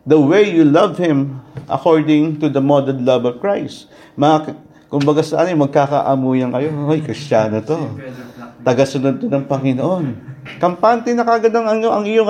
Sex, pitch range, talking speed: male, 130-155 Hz, 155 wpm